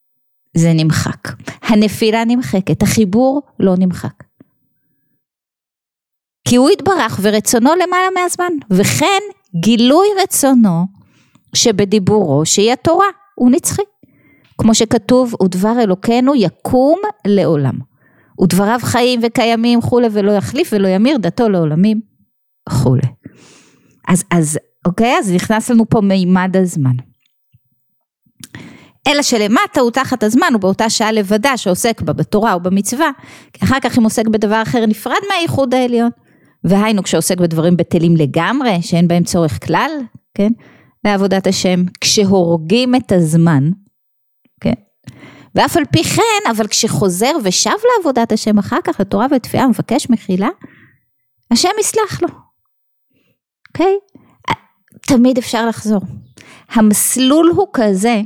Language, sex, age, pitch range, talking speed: Hebrew, female, 30-49, 185-255 Hz, 115 wpm